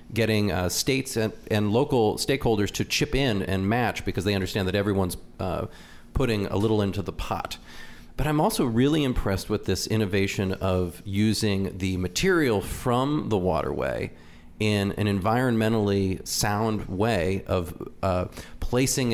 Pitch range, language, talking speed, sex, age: 100-130 Hz, English, 145 wpm, male, 40-59